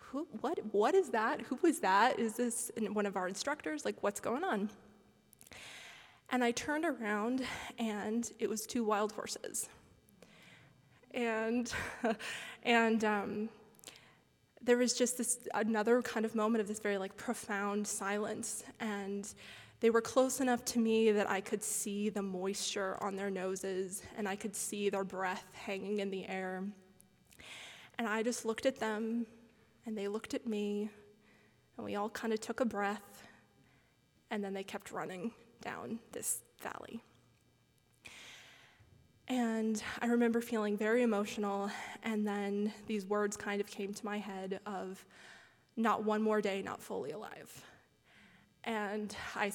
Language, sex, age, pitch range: English, female, 20-39, 205-235 Hz